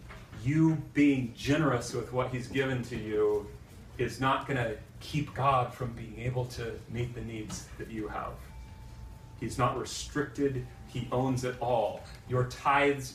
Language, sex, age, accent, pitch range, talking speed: English, male, 30-49, American, 110-130 Hz, 155 wpm